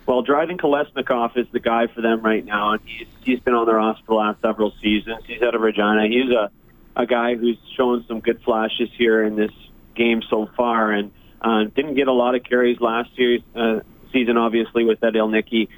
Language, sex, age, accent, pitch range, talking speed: English, male, 30-49, American, 105-120 Hz, 215 wpm